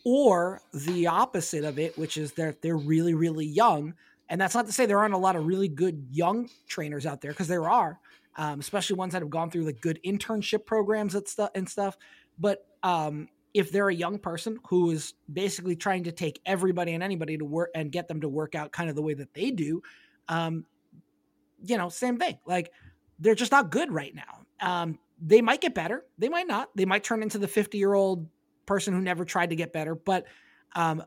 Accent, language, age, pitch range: American, English, 20-39, 165-210 Hz